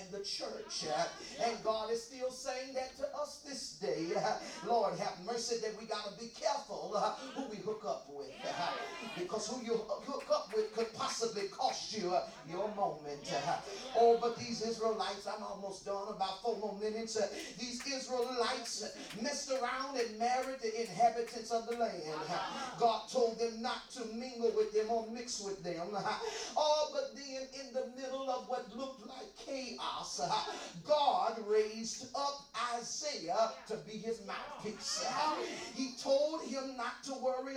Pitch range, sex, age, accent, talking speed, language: 215-260 Hz, male, 40-59, American, 155 wpm, English